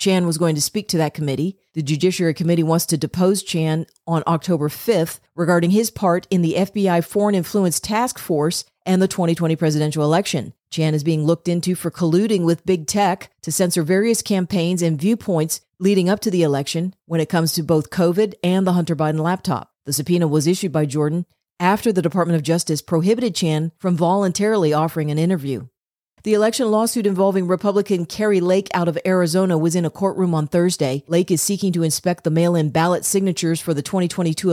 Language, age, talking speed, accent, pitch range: English, 40-59, 195 wpm, American, 160-185 Hz